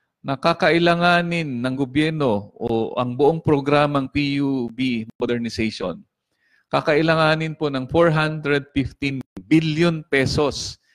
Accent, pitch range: Filipino, 115-150 Hz